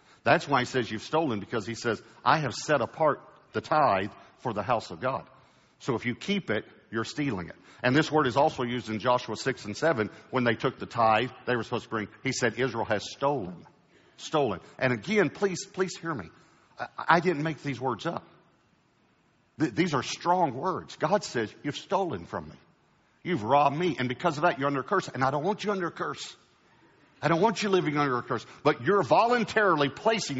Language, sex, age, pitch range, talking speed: English, male, 50-69, 120-160 Hz, 215 wpm